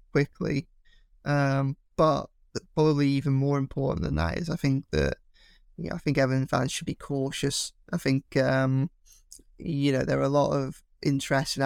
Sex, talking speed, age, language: male, 170 wpm, 20-39, English